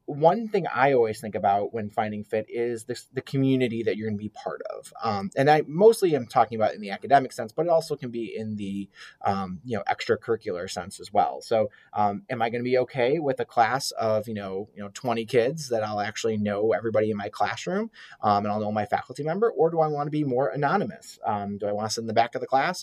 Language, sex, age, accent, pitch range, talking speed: English, male, 30-49, American, 110-150 Hz, 260 wpm